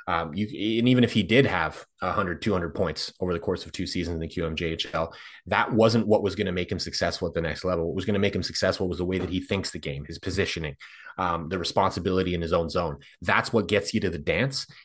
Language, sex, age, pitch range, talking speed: English, male, 30-49, 85-105 Hz, 260 wpm